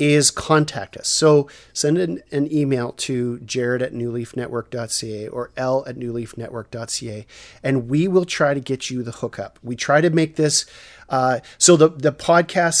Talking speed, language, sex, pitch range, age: 165 wpm, English, male, 125-145 Hz, 40-59